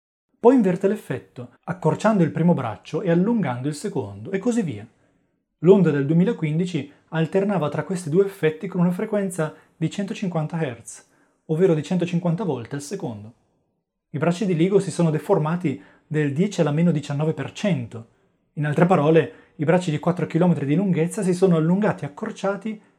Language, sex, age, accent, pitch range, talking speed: Italian, male, 20-39, native, 145-190 Hz, 160 wpm